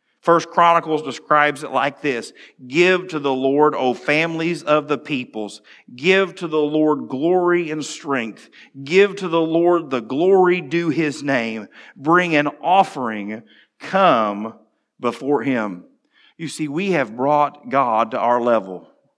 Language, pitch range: English, 125-165 Hz